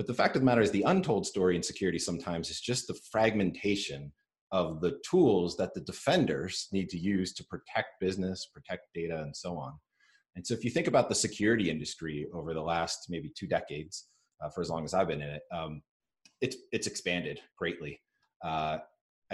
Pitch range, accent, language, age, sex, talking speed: 85-105 Hz, American, English, 30-49, male, 200 wpm